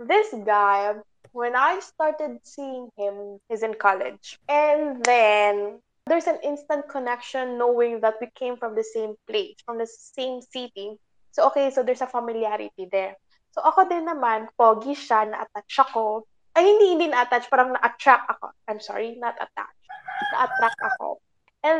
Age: 20-39